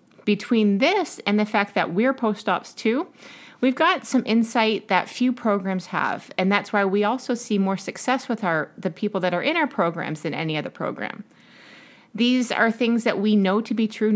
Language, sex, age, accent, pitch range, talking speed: English, female, 30-49, American, 185-235 Hz, 200 wpm